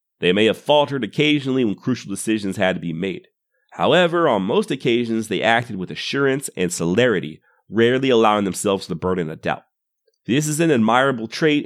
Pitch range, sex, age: 105-140 Hz, male, 30-49